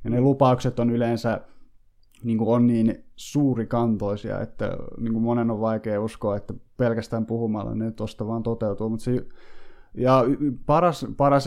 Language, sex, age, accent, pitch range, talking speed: Finnish, male, 20-39, native, 110-120 Hz, 140 wpm